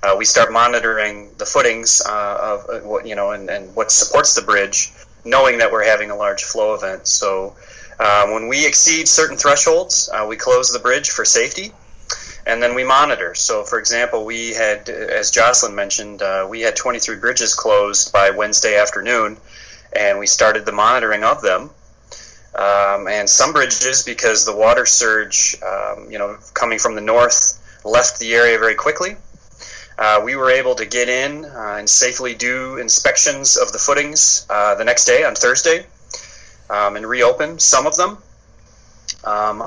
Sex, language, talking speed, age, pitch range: male, English, 175 wpm, 30-49, 105-140 Hz